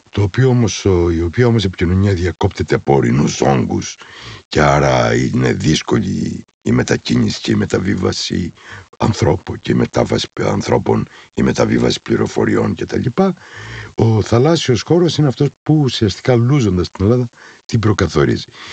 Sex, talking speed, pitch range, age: male, 120 wpm, 105-140 Hz, 60-79